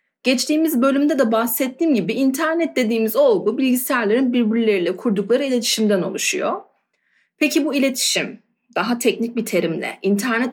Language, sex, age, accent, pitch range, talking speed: Turkish, female, 30-49, native, 220-305 Hz, 120 wpm